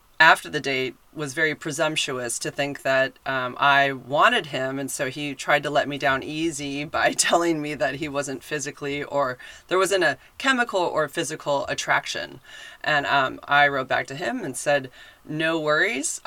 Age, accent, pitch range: 30-49, American, 140-170 Hz